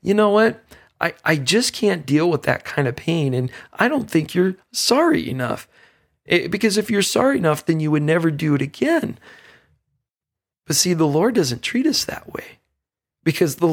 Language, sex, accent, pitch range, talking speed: English, male, American, 140-175 Hz, 190 wpm